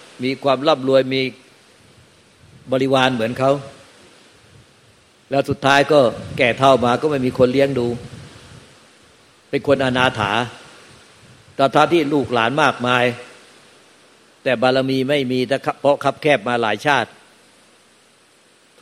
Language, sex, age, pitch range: Thai, male, 60-79, 125-145 Hz